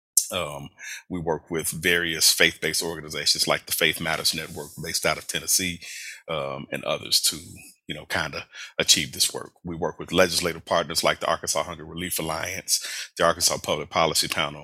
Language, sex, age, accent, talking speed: English, male, 40-59, American, 180 wpm